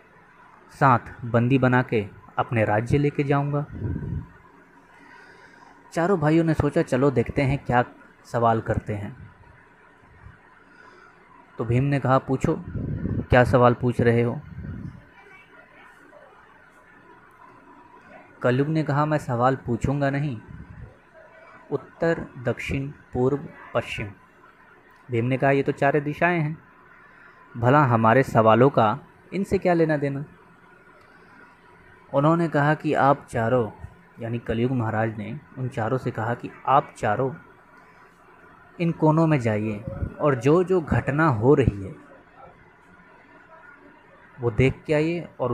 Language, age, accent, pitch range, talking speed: Hindi, 20-39, native, 120-150 Hz, 115 wpm